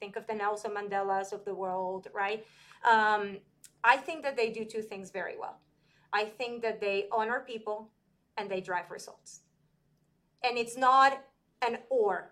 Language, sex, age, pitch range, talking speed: English, female, 30-49, 195-240 Hz, 165 wpm